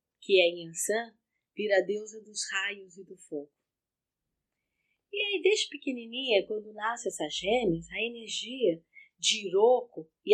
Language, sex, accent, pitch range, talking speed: Portuguese, female, Brazilian, 205-290 Hz, 140 wpm